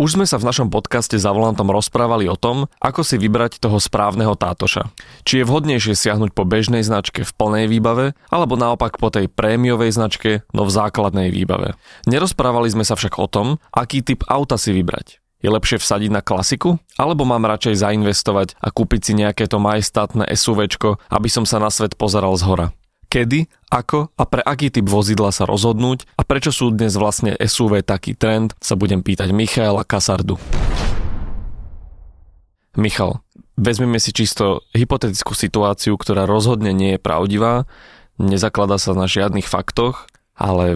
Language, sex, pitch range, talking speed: Slovak, male, 100-120 Hz, 160 wpm